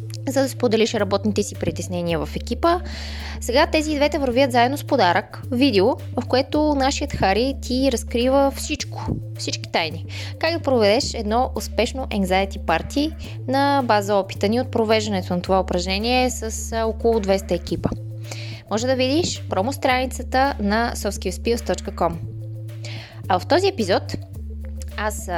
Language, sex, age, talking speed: Bulgarian, female, 20-39, 130 wpm